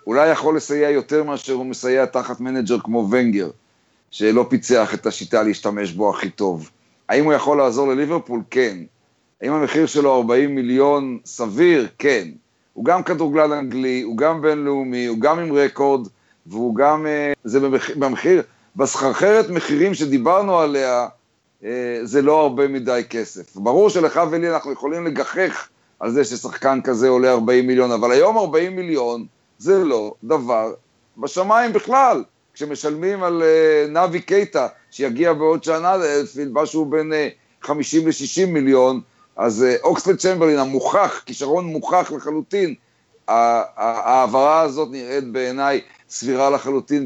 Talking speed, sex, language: 135 wpm, male, Hebrew